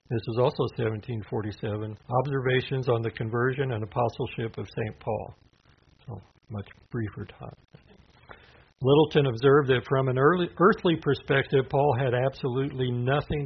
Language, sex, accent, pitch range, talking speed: English, male, American, 110-135 Hz, 125 wpm